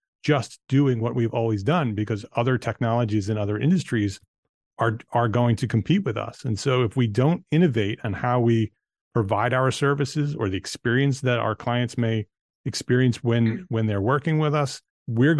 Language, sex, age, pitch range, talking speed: English, male, 40-59, 110-135 Hz, 180 wpm